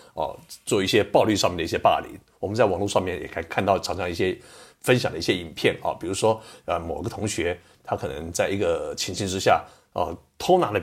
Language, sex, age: Chinese, male, 50-69